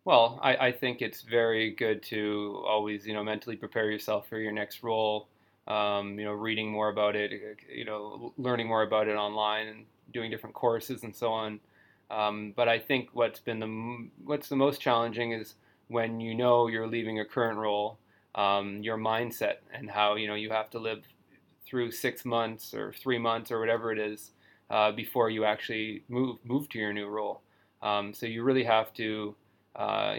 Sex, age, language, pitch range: male, 20-39, English, 105-120 Hz